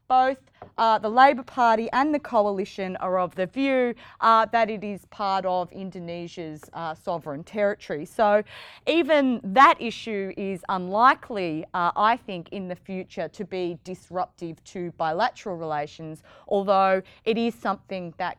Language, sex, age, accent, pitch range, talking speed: English, female, 30-49, Australian, 180-245 Hz, 145 wpm